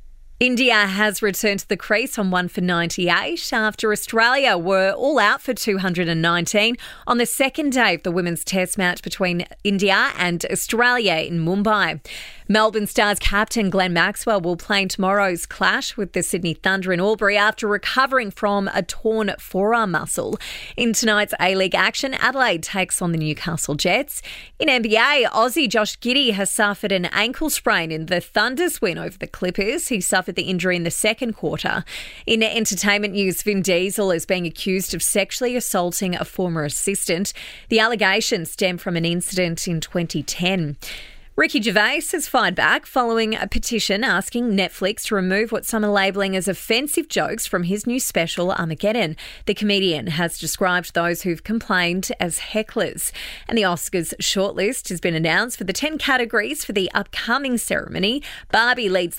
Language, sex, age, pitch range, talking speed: English, female, 30-49, 180-225 Hz, 165 wpm